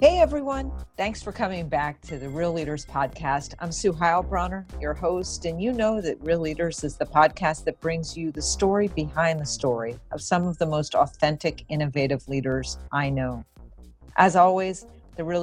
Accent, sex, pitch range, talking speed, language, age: American, female, 145-185 Hz, 185 wpm, English, 50-69